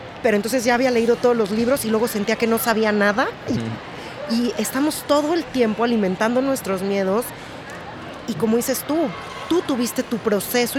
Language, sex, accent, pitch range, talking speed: Spanish, female, Mexican, 195-240 Hz, 180 wpm